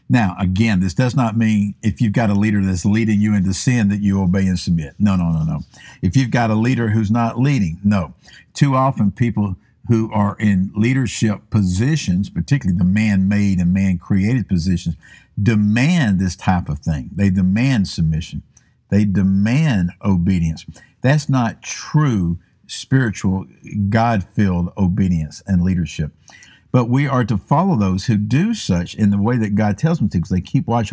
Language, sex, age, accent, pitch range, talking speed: English, male, 50-69, American, 95-135 Hz, 170 wpm